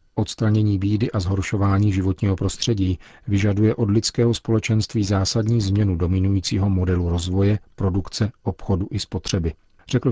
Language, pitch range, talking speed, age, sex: Czech, 95-105 Hz, 120 wpm, 40-59, male